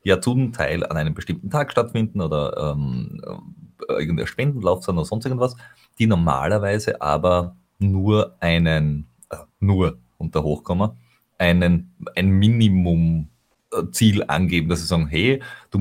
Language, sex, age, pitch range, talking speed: German, male, 30-49, 85-110 Hz, 140 wpm